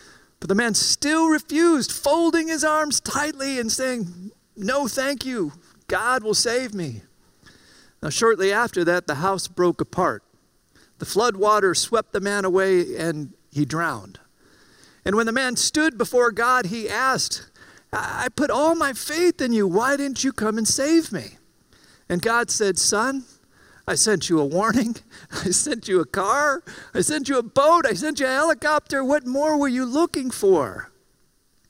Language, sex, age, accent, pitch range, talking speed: English, male, 50-69, American, 180-265 Hz, 170 wpm